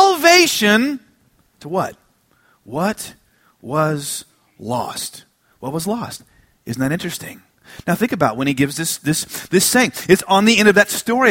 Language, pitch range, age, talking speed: English, 170-235 Hz, 30-49, 155 wpm